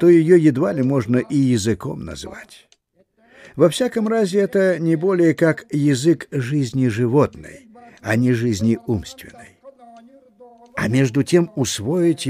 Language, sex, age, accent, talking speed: Russian, male, 50-69, native, 125 wpm